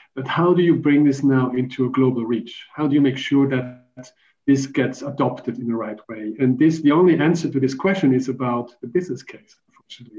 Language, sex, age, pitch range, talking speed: English, male, 50-69, 130-150 Hz, 220 wpm